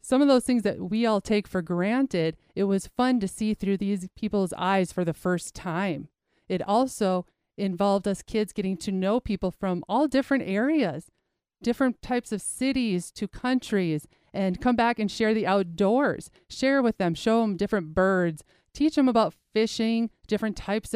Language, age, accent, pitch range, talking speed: English, 30-49, American, 185-225 Hz, 180 wpm